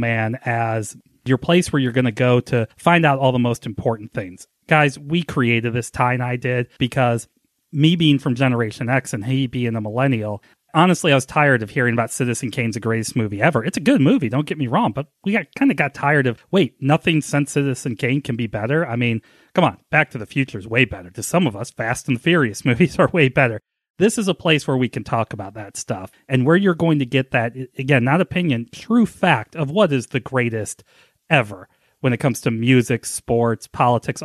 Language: English